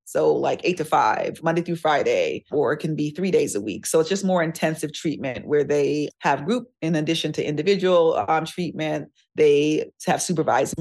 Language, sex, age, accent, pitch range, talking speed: English, female, 30-49, American, 145-170 Hz, 195 wpm